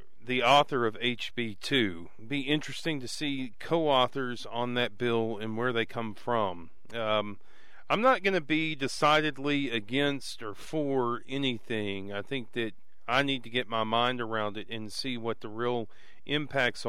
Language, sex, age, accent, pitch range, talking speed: English, male, 40-59, American, 110-145 Hz, 160 wpm